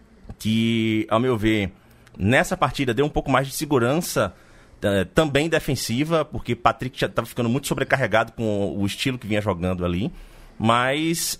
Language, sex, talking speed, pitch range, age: Portuguese, male, 160 wpm, 110-155 Hz, 30-49